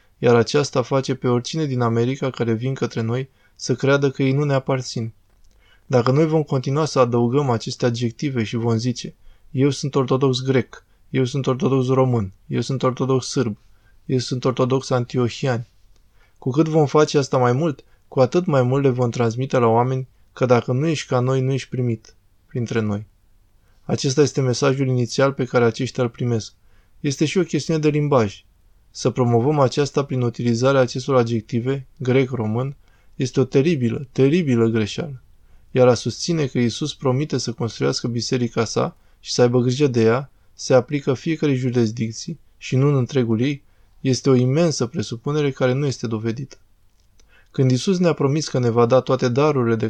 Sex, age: male, 20-39